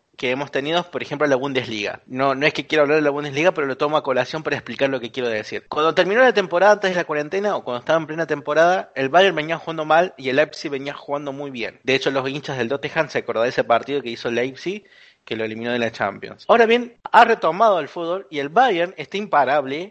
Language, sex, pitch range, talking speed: Spanish, male, 140-195 Hz, 255 wpm